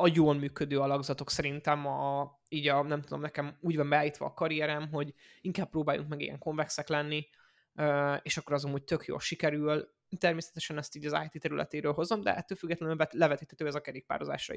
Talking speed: 180 wpm